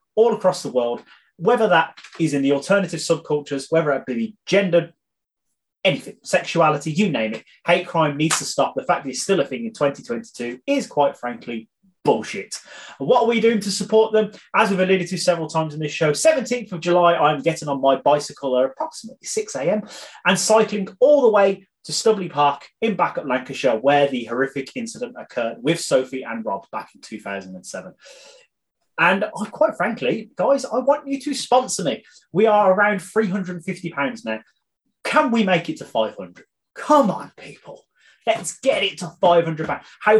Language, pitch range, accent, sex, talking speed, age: English, 145-220 Hz, British, male, 180 wpm, 30-49